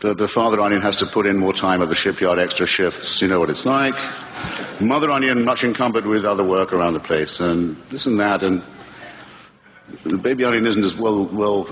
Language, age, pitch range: English, 50-69, 95-120 Hz